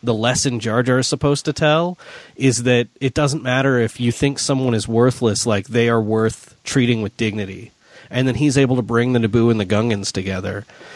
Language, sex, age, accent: English, male, 30-49, American